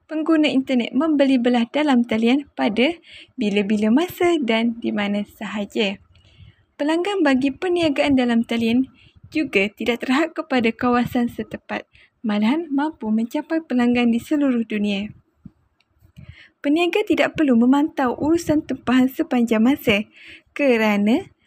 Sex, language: female, Malay